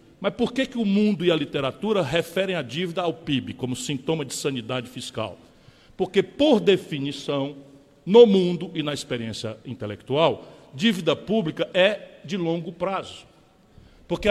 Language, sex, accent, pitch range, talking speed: Portuguese, male, Brazilian, 155-215 Hz, 145 wpm